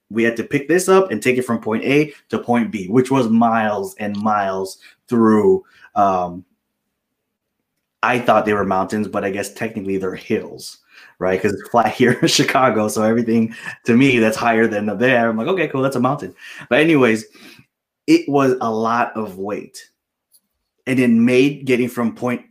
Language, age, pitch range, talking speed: English, 20-39, 110-135 Hz, 185 wpm